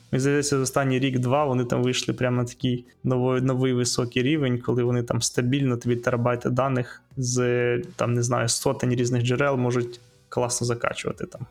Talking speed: 170 wpm